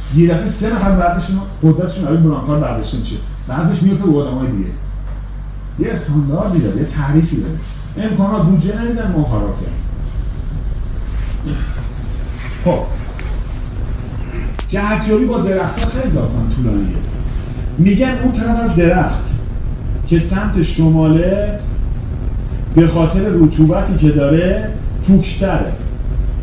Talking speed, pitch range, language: 105 wpm, 120-185 Hz, Persian